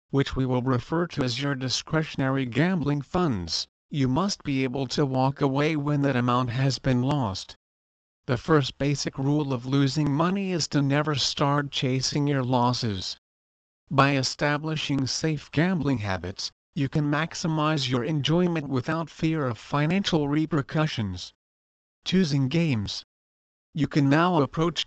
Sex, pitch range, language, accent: male, 125-155 Hz, English, American